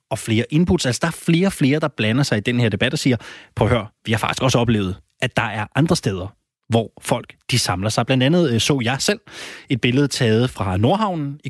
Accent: native